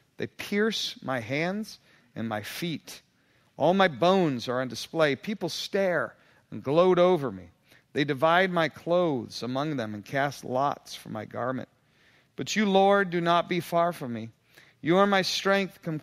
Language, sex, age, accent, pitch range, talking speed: English, male, 40-59, American, 130-180 Hz, 170 wpm